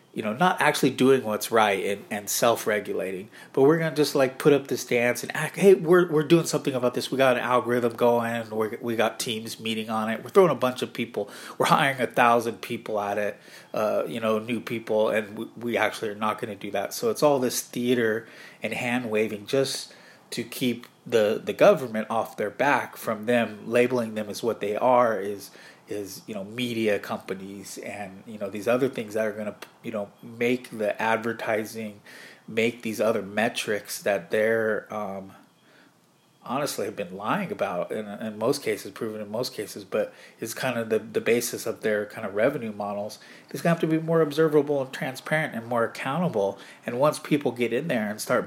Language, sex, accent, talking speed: English, male, American, 210 wpm